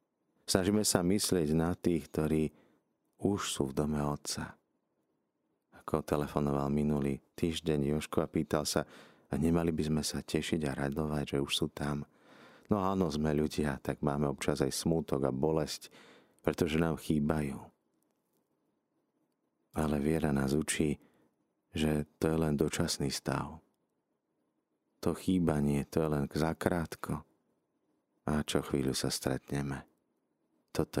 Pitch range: 70-80 Hz